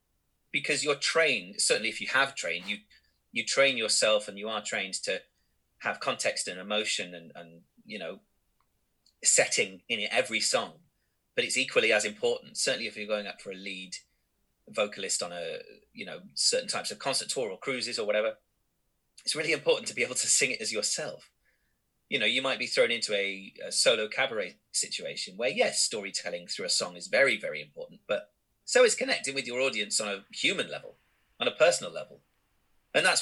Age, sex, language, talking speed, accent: 30-49, male, English, 195 wpm, British